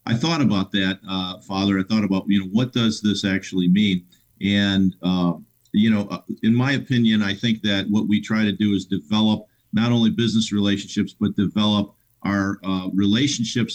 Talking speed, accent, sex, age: 185 wpm, American, male, 50-69